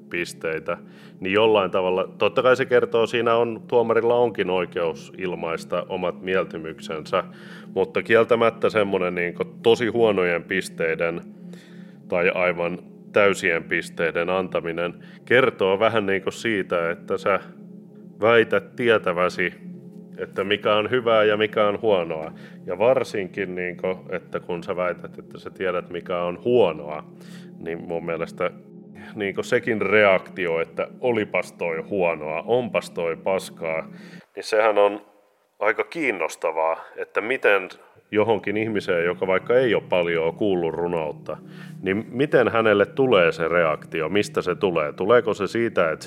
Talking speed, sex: 135 wpm, male